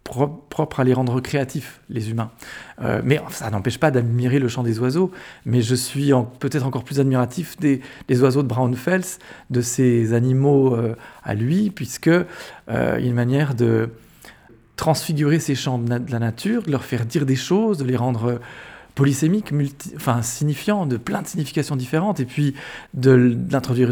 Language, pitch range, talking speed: French, 125-165 Hz, 180 wpm